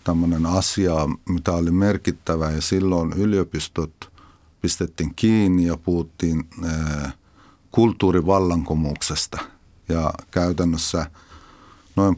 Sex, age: male, 50-69